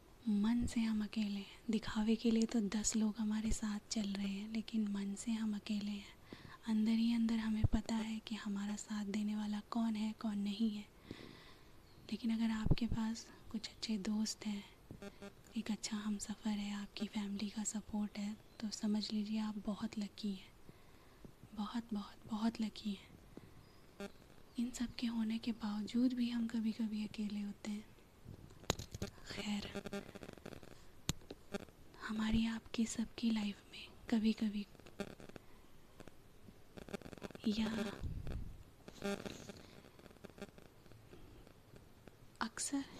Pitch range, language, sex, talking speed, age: 210-225 Hz, Hindi, female, 125 wpm, 20-39